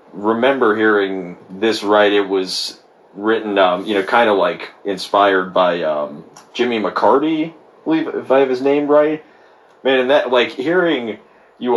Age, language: 30-49, English